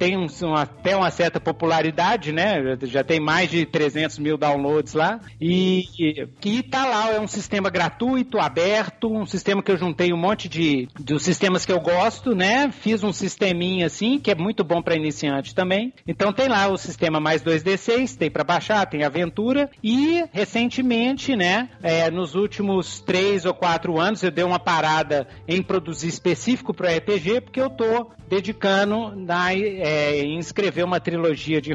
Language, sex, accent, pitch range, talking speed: Portuguese, male, Brazilian, 155-205 Hz, 175 wpm